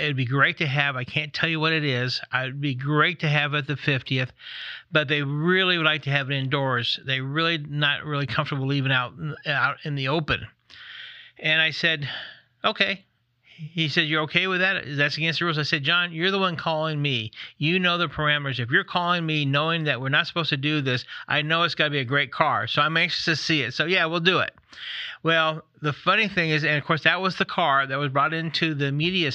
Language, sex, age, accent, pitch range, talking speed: English, male, 40-59, American, 140-170 Hz, 240 wpm